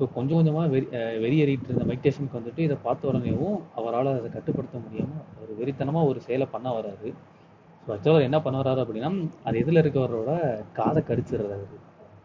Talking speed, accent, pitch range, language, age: 160 wpm, native, 120-155 Hz, Tamil, 20-39